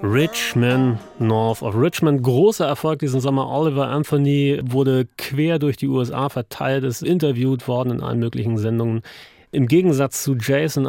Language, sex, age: German, male, 30-49